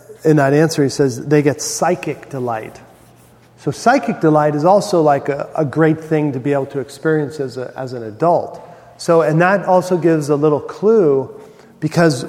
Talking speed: 180 wpm